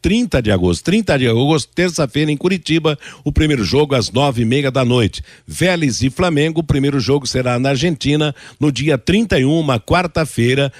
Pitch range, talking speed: 125-170 Hz, 170 wpm